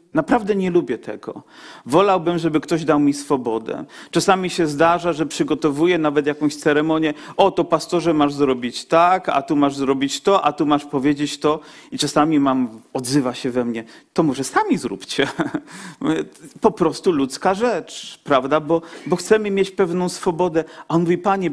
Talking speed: 165 wpm